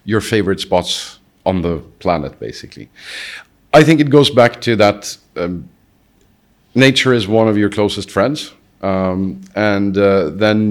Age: 40-59